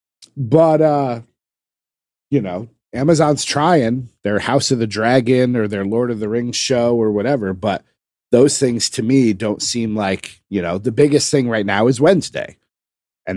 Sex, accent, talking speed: male, American, 170 wpm